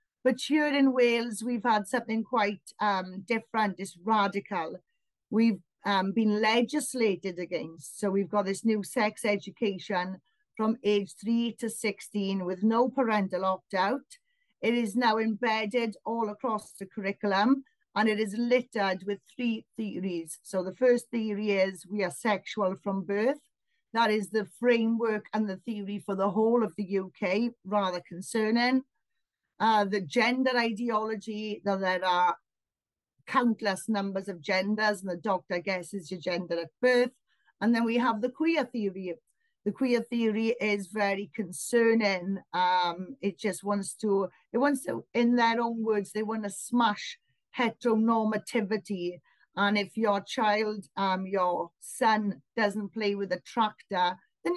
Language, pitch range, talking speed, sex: English, 195-235 Hz, 150 wpm, female